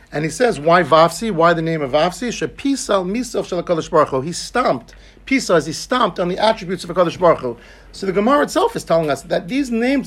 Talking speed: 195 wpm